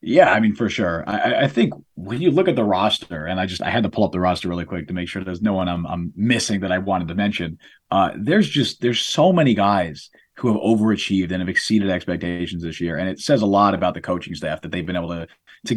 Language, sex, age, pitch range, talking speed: English, male, 30-49, 90-110 Hz, 270 wpm